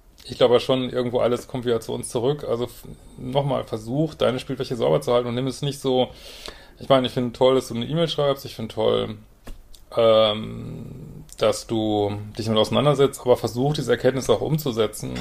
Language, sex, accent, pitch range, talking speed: German, male, German, 110-135 Hz, 190 wpm